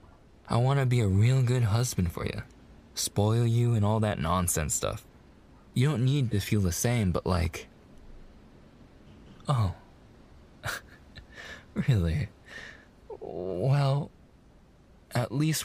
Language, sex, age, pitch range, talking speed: English, male, 20-39, 95-130 Hz, 120 wpm